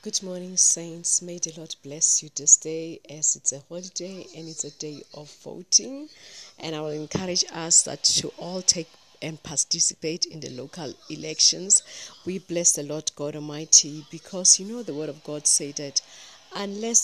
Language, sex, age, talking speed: English, female, 40-59, 180 wpm